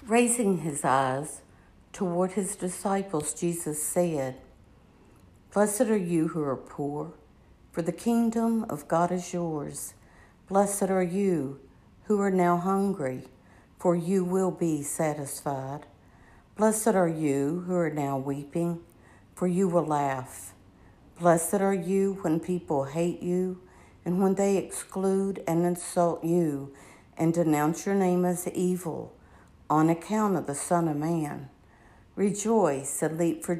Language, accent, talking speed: English, American, 135 wpm